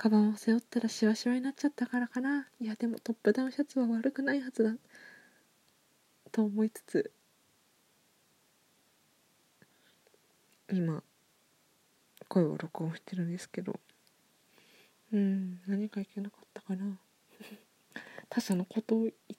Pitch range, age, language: 205-265 Hz, 20-39, Japanese